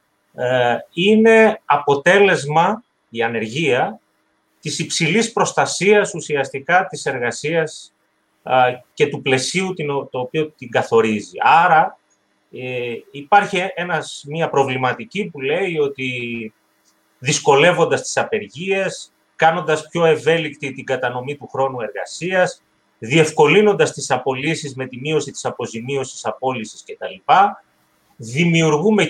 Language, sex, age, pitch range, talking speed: Greek, male, 30-49, 130-190 Hz, 105 wpm